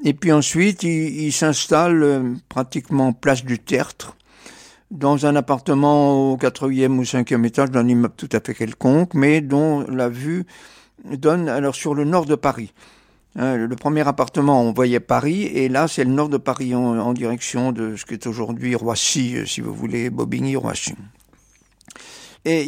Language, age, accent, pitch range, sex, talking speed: French, 50-69, French, 125-150 Hz, male, 160 wpm